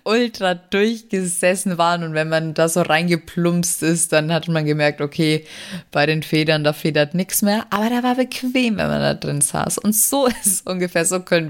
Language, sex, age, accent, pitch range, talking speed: German, female, 20-39, German, 145-175 Hz, 200 wpm